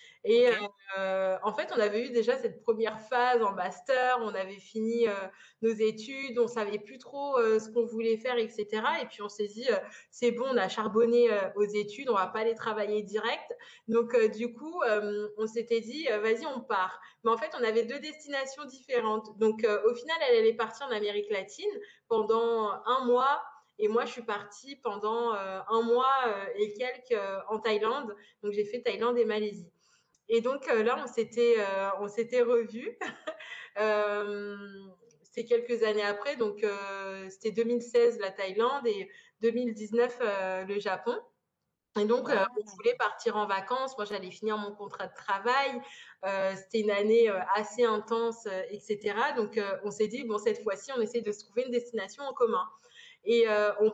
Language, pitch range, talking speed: French, 210-250 Hz, 195 wpm